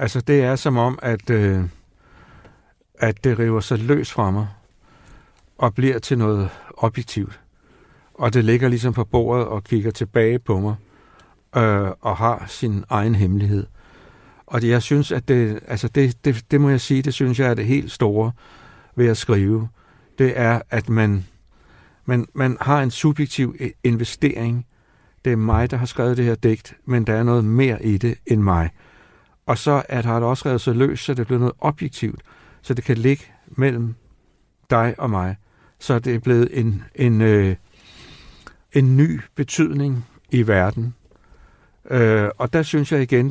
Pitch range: 110-130 Hz